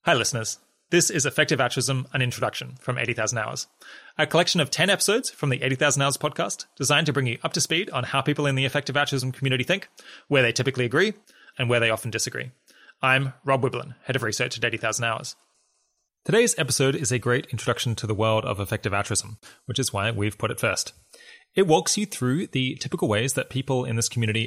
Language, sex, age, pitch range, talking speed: English, male, 20-39, 110-140 Hz, 210 wpm